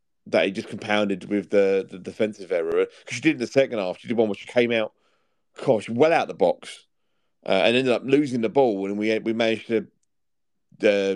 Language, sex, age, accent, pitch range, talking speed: English, male, 40-59, British, 105-140 Hz, 225 wpm